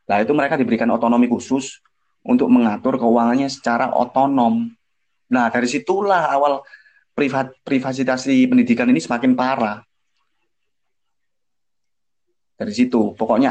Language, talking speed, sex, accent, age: Indonesian, 100 wpm, male, native, 20-39